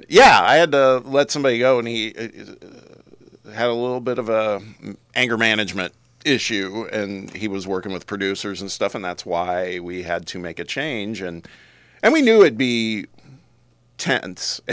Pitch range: 85-110 Hz